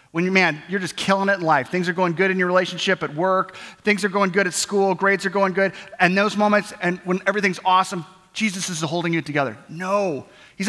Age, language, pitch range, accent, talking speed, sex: 30-49, English, 145-195 Hz, American, 235 wpm, male